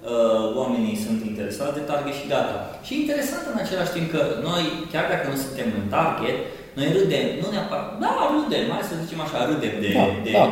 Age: 20-39